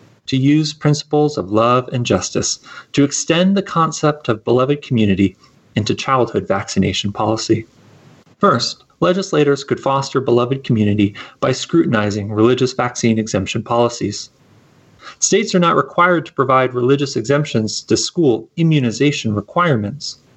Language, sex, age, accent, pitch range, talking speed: English, male, 30-49, American, 115-160 Hz, 125 wpm